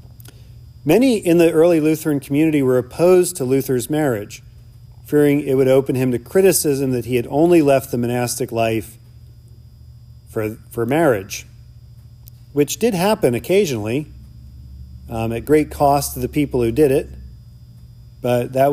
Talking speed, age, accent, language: 145 wpm, 40-59, American, English